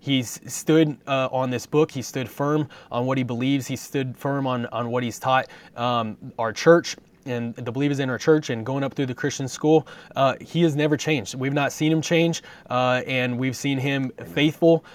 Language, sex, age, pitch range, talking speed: English, male, 20-39, 130-160 Hz, 215 wpm